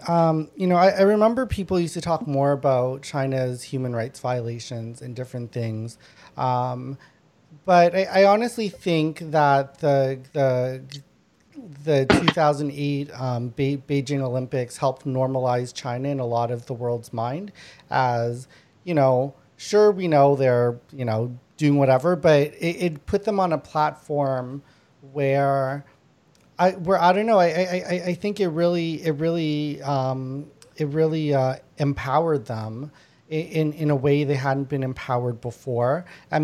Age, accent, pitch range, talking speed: 30-49, American, 125-155 Hz, 155 wpm